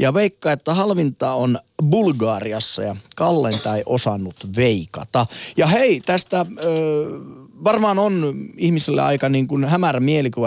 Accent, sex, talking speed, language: native, male, 130 wpm, Finnish